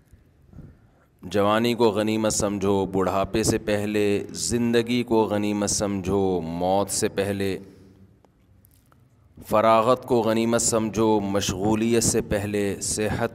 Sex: male